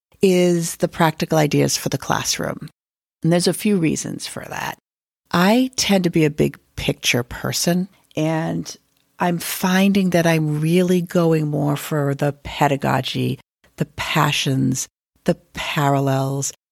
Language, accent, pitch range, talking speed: English, American, 140-175 Hz, 135 wpm